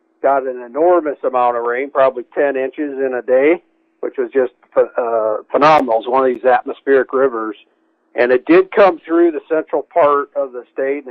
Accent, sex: American, male